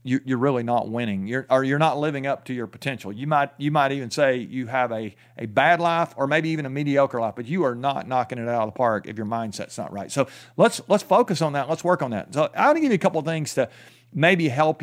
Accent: American